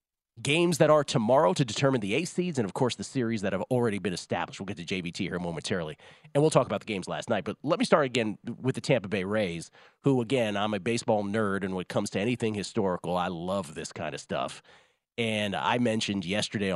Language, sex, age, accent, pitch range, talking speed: English, male, 40-59, American, 100-130 Hz, 235 wpm